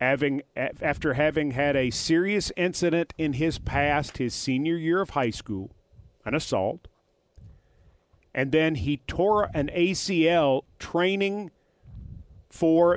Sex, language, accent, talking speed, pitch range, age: male, English, American, 115 wpm, 130-180 Hz, 40-59